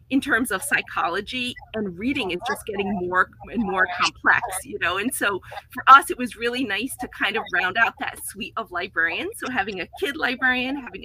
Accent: American